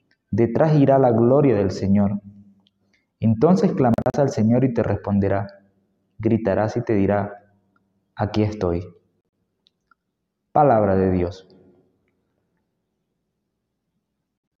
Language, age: Spanish, 30-49